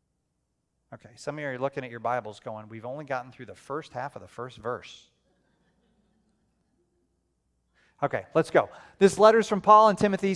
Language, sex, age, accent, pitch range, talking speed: English, male, 40-59, American, 130-180 Hz, 180 wpm